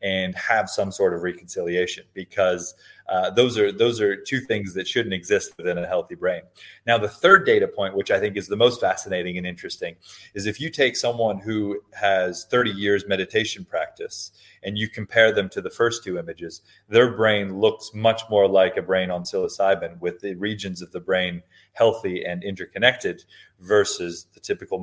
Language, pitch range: English, 95-115 Hz